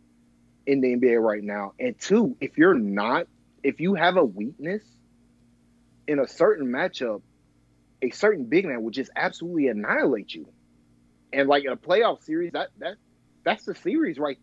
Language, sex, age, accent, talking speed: English, male, 30-49, American, 165 wpm